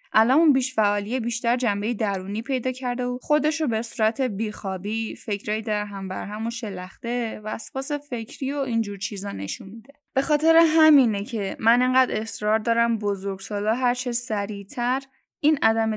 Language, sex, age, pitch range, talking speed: Persian, female, 10-29, 215-275 Hz, 165 wpm